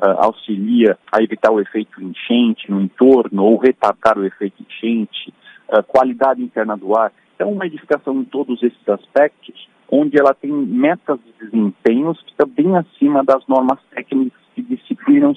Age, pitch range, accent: 50-69, 110-145 Hz, Brazilian